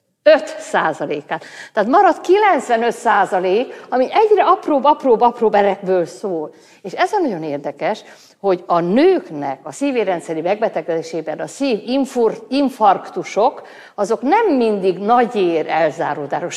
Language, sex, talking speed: Hungarian, female, 110 wpm